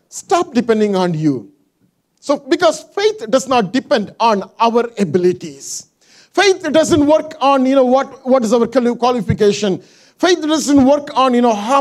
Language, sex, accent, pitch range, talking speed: English, male, Indian, 185-255 Hz, 160 wpm